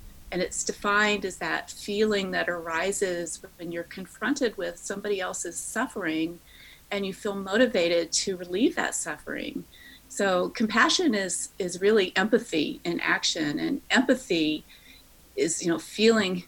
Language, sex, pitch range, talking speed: English, female, 165-215 Hz, 135 wpm